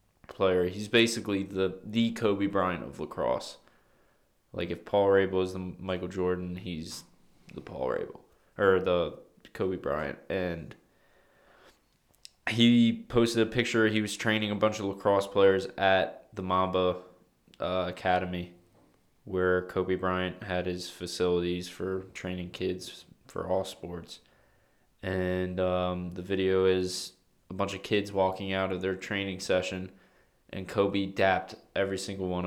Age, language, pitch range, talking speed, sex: 20-39, English, 90-100 Hz, 140 wpm, male